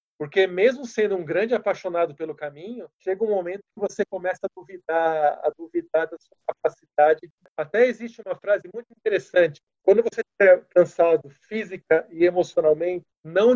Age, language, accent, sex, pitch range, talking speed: 40-59, Portuguese, Brazilian, male, 170-210 Hz, 155 wpm